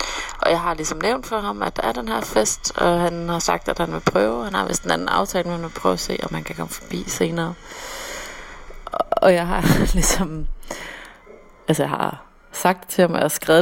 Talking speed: 235 wpm